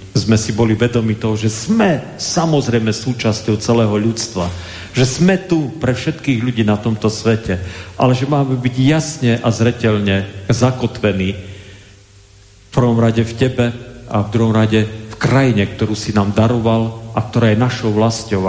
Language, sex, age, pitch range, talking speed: Slovak, male, 40-59, 100-120 Hz, 155 wpm